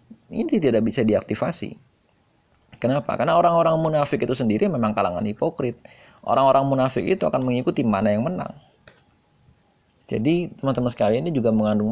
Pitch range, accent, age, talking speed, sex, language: 110-140 Hz, native, 20-39, 135 wpm, male, Indonesian